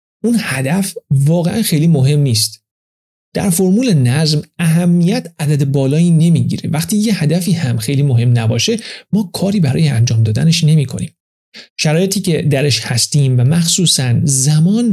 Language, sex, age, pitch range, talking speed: Persian, male, 40-59, 130-175 Hz, 135 wpm